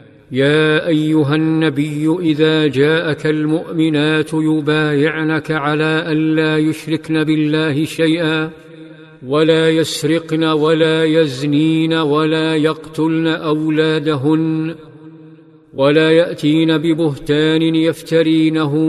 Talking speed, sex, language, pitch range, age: 75 wpm, male, Arabic, 150-155 Hz, 50-69